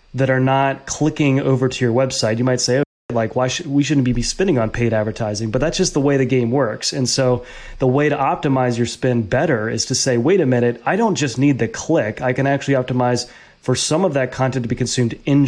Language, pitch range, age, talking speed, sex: English, 120-135 Hz, 30-49, 245 wpm, male